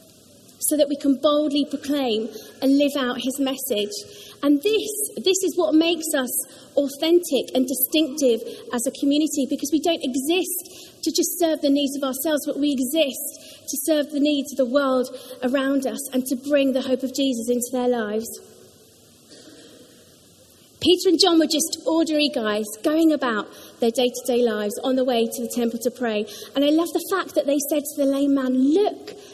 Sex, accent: female, British